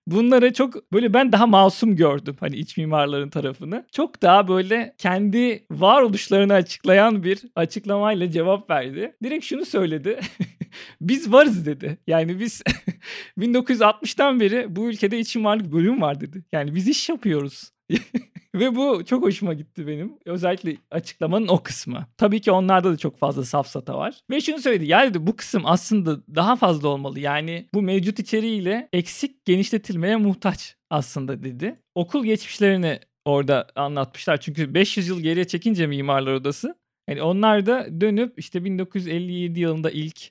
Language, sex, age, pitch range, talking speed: Turkish, male, 50-69, 150-210 Hz, 145 wpm